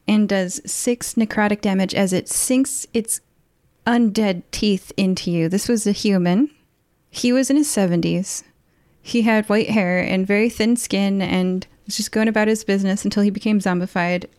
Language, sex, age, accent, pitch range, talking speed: English, female, 30-49, American, 185-225 Hz, 170 wpm